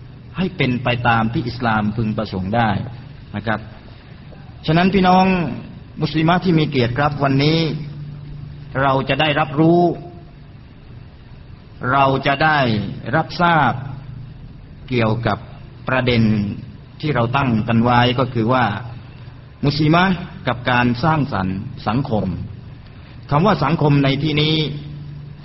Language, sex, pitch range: Thai, male, 120-145 Hz